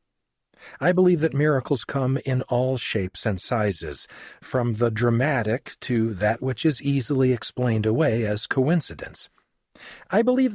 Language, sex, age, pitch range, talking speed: English, male, 50-69, 105-150 Hz, 135 wpm